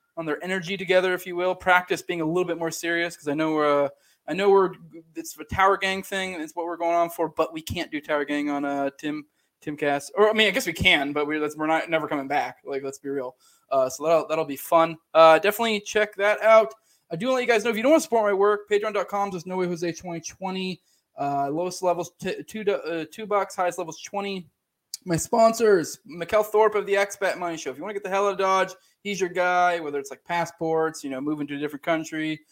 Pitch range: 155-200 Hz